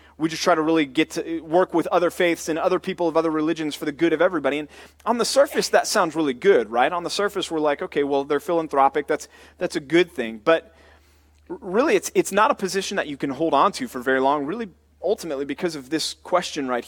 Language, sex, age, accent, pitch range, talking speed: English, male, 30-49, American, 140-180 Hz, 240 wpm